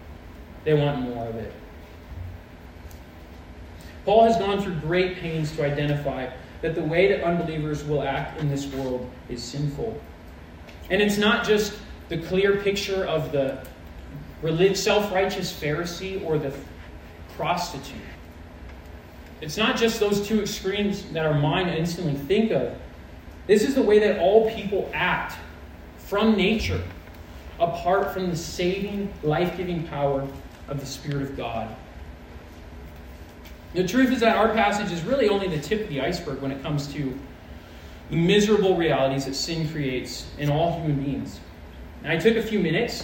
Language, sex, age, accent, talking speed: English, male, 20-39, American, 150 wpm